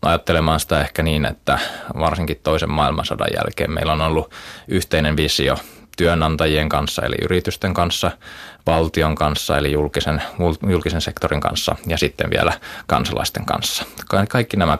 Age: 20-39